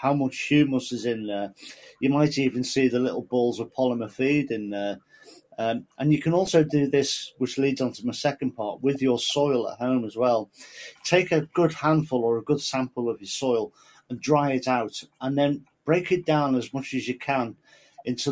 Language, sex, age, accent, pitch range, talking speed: English, male, 40-59, British, 120-145 Hz, 215 wpm